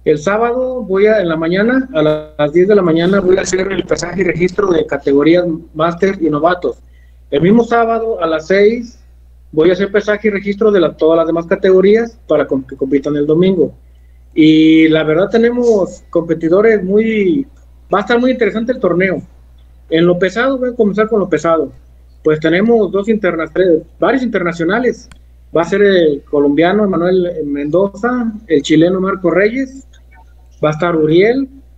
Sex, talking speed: male, 170 wpm